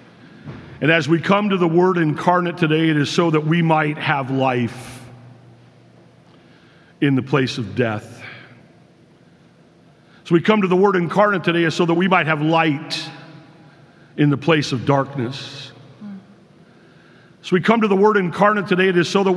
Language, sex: English, male